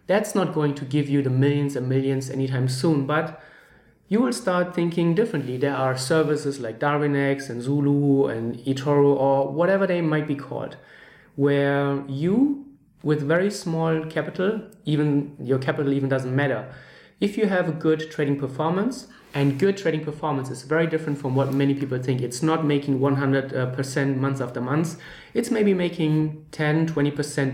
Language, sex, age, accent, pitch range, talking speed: English, male, 30-49, German, 140-165 Hz, 165 wpm